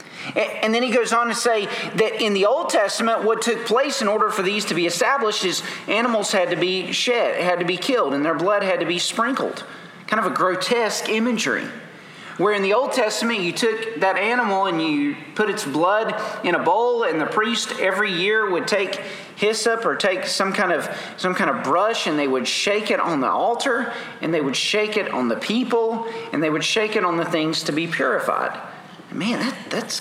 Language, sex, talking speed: English, male, 210 wpm